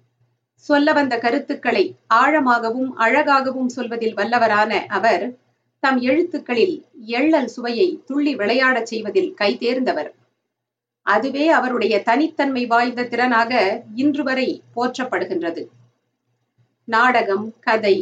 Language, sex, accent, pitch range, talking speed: Tamil, female, native, 215-290 Hz, 90 wpm